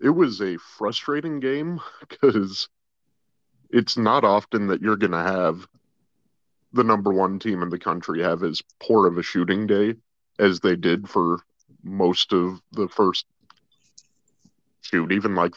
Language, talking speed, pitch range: English, 150 wpm, 85-100 Hz